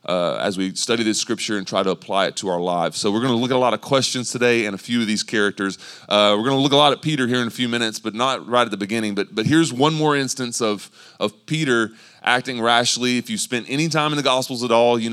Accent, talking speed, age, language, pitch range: American, 290 wpm, 30-49, English, 110-130 Hz